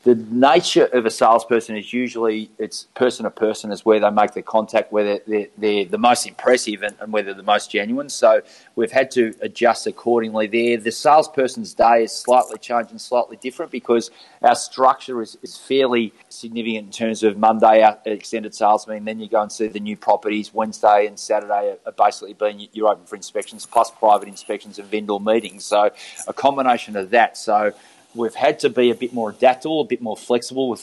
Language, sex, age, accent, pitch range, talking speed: English, male, 30-49, Australian, 105-125 Hz, 200 wpm